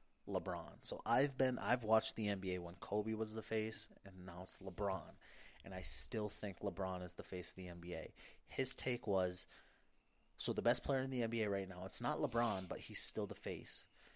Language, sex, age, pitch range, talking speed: English, male, 30-49, 95-110 Hz, 205 wpm